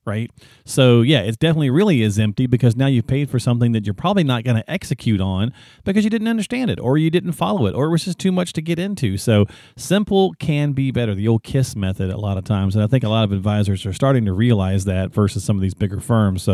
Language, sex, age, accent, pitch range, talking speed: English, male, 40-59, American, 105-145 Hz, 265 wpm